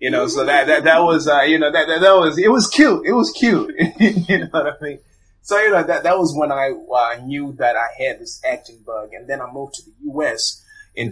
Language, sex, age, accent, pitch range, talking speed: English, male, 30-49, American, 115-145 Hz, 265 wpm